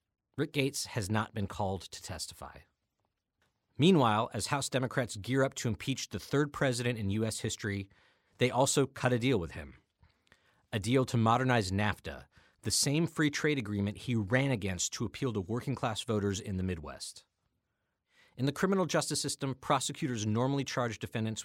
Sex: male